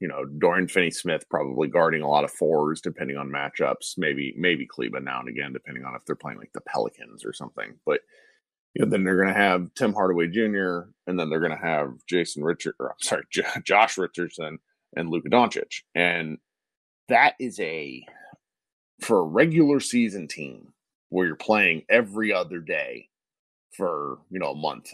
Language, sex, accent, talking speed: English, male, American, 185 wpm